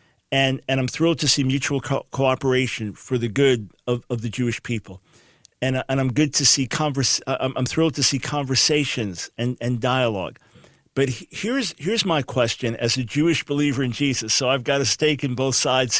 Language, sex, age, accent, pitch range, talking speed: English, male, 50-69, American, 120-150 Hz, 190 wpm